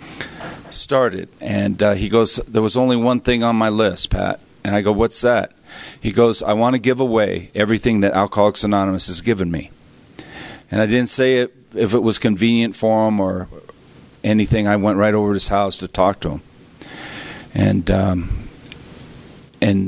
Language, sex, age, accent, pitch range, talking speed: English, male, 50-69, American, 95-110 Hz, 180 wpm